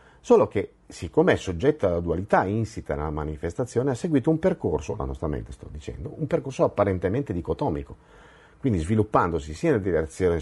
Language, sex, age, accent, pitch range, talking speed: Italian, male, 50-69, native, 90-150 Hz, 160 wpm